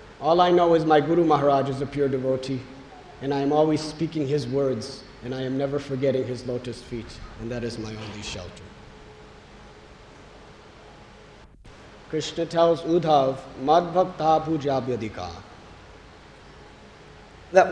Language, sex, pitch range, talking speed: English, male, 140-205 Hz, 125 wpm